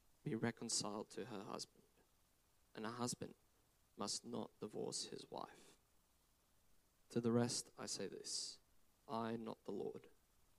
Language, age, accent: English, 20-39, Australian